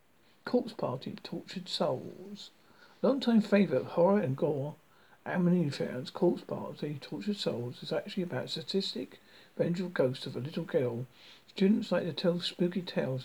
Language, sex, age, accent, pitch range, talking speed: English, male, 60-79, British, 155-195 Hz, 155 wpm